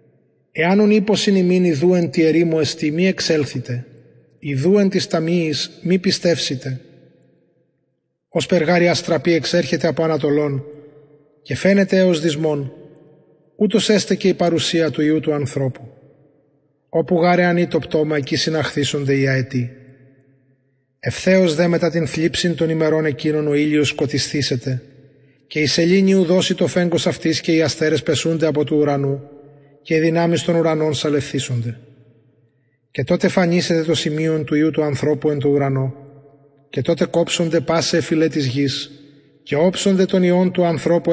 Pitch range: 140-170 Hz